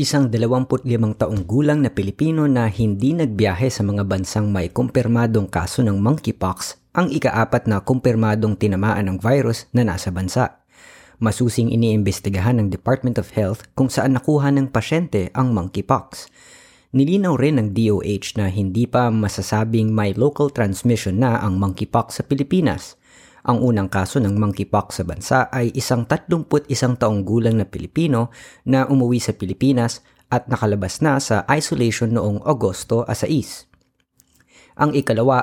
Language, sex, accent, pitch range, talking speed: Filipino, female, native, 105-130 Hz, 140 wpm